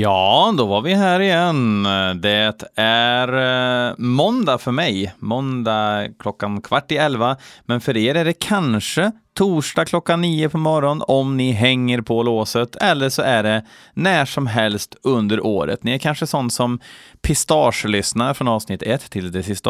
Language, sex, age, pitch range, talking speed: Swedish, male, 30-49, 110-145 Hz, 160 wpm